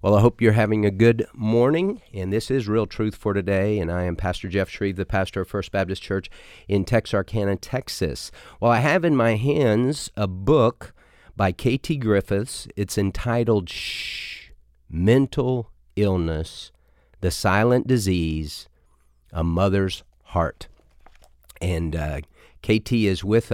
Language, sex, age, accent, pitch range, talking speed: English, male, 40-59, American, 90-110 Hz, 145 wpm